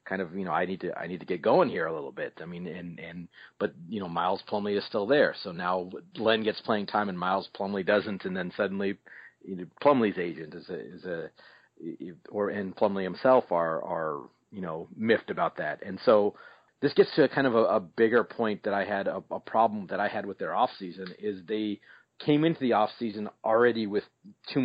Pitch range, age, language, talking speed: 95-110 Hz, 40-59, English, 225 wpm